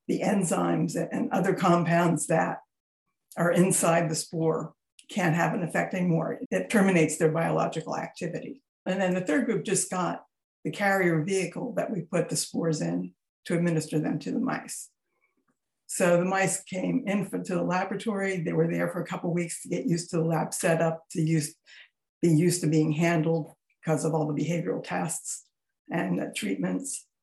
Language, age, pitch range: English, 60-79, 160-190 Hz